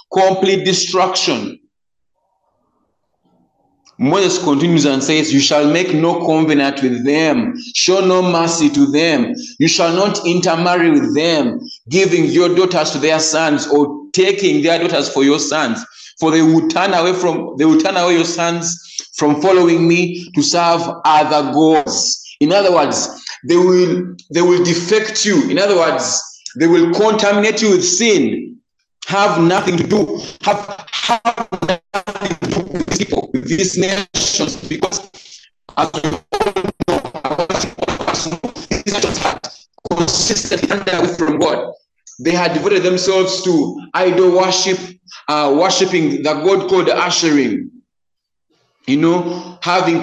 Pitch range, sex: 160-195 Hz, male